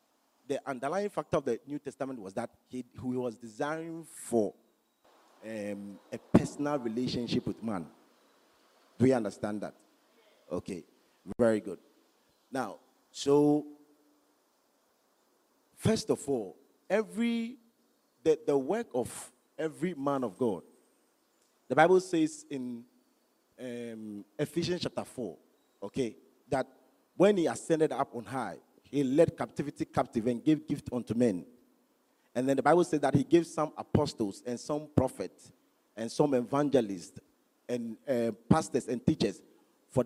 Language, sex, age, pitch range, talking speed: English, male, 40-59, 120-160 Hz, 130 wpm